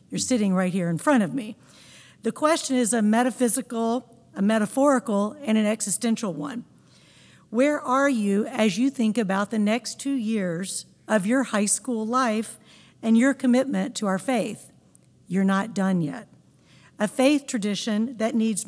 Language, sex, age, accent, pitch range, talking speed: English, female, 50-69, American, 190-225 Hz, 160 wpm